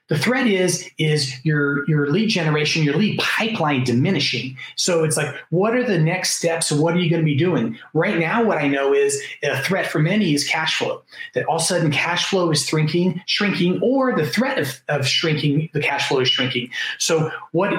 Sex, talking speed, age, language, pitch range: male, 215 wpm, 30-49, English, 145-185 Hz